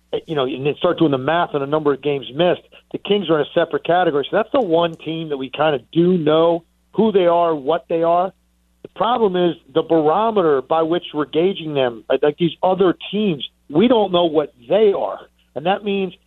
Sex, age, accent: male, 50-69, American